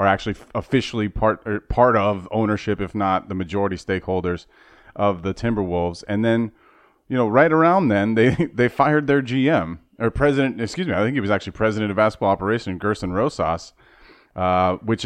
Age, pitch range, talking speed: 30-49, 95-115 Hz, 180 wpm